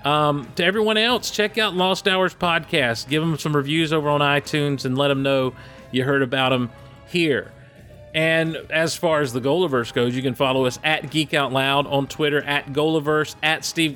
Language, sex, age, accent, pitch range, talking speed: English, male, 40-59, American, 135-165 Hz, 200 wpm